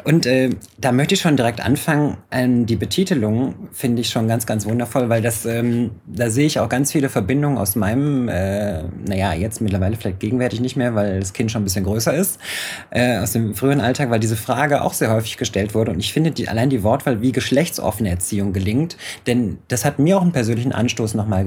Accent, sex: German, male